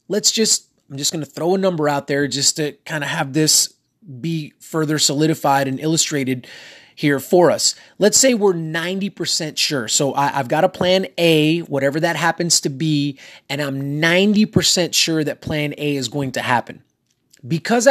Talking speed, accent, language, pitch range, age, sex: 175 wpm, American, English, 145-180 Hz, 30-49, male